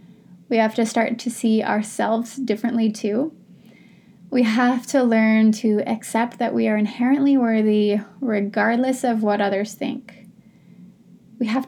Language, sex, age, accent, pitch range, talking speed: English, female, 20-39, American, 215-255 Hz, 140 wpm